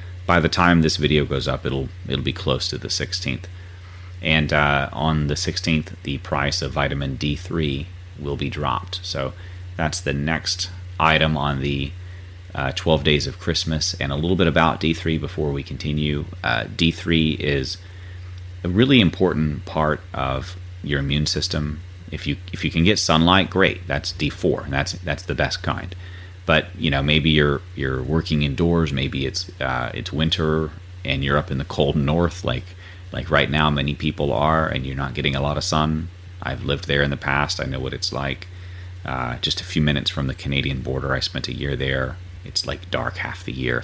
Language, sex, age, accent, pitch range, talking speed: English, male, 30-49, American, 70-90 Hz, 190 wpm